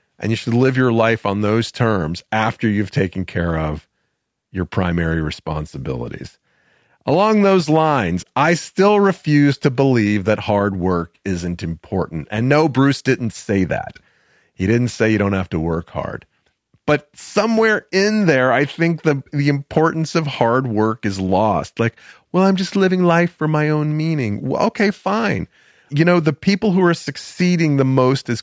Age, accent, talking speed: 40-59, American, 175 wpm